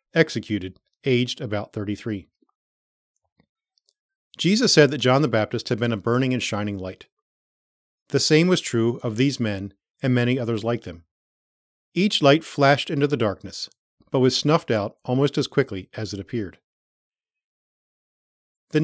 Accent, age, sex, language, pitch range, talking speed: American, 40-59, male, English, 110-150 Hz, 145 wpm